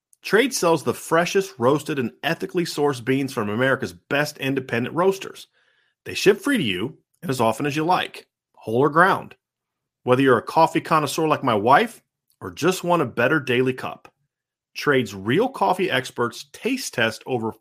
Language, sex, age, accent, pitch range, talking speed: English, male, 40-59, American, 125-175 Hz, 170 wpm